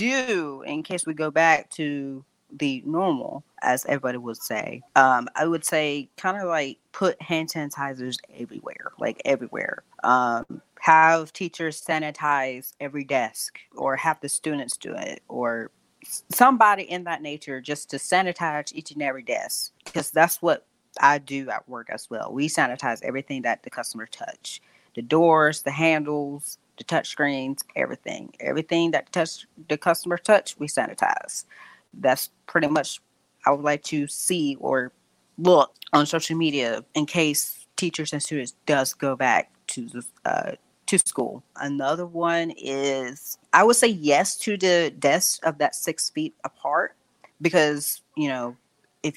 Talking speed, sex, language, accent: 155 wpm, female, English, American